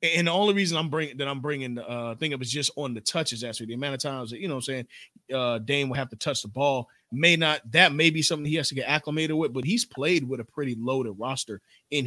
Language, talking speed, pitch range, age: English, 290 wpm, 120-145 Hz, 30-49